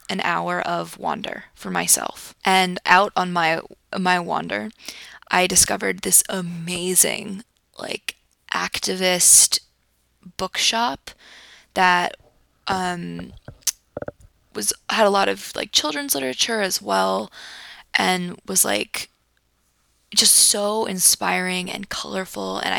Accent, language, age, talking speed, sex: American, English, 20-39, 105 wpm, female